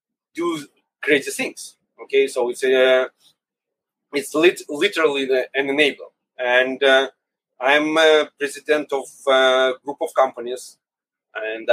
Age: 30-49